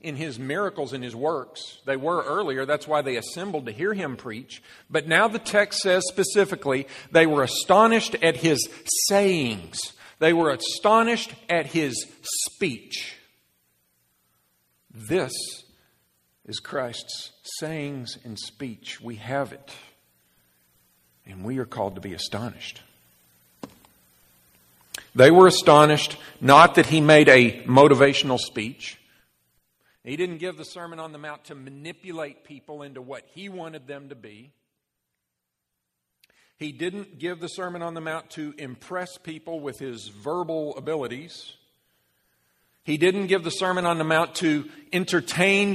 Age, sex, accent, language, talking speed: 50-69, male, American, English, 135 wpm